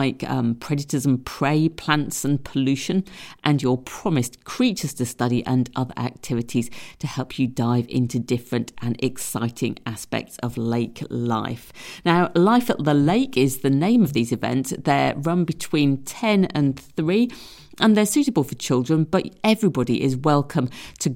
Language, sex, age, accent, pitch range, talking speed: English, female, 50-69, British, 125-170 Hz, 160 wpm